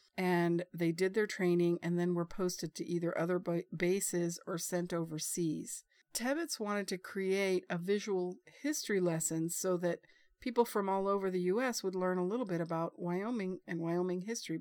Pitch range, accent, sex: 175-210 Hz, American, female